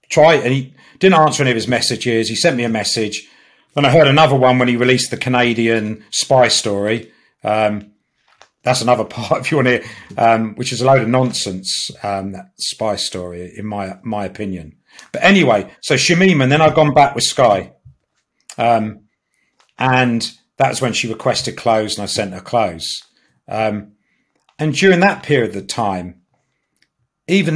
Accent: British